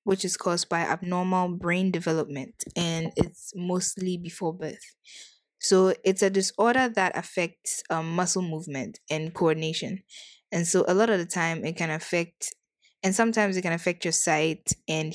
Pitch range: 165-205 Hz